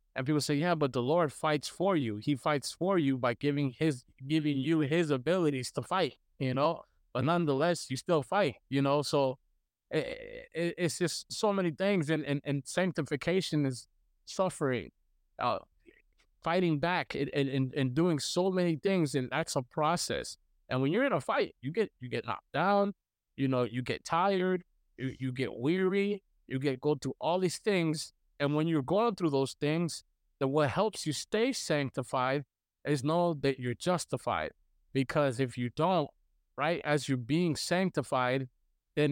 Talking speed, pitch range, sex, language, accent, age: 180 wpm, 130-170 Hz, male, English, American, 20-39